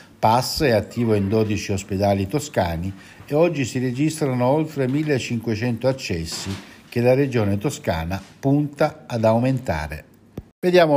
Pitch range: 100-130 Hz